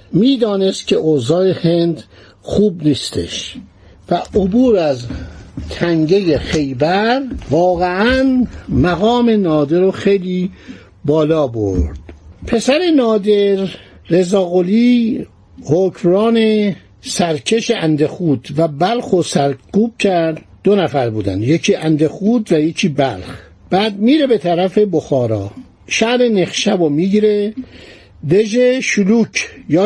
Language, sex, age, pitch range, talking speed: Persian, male, 60-79, 150-210 Hz, 100 wpm